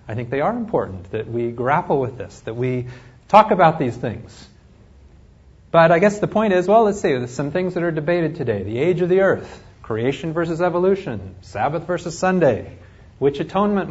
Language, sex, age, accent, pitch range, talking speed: English, male, 40-59, American, 115-175 Hz, 195 wpm